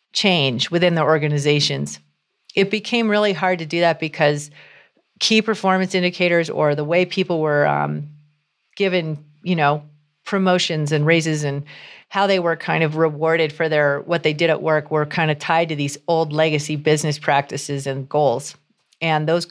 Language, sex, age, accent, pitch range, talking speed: English, female, 40-59, American, 150-185 Hz, 170 wpm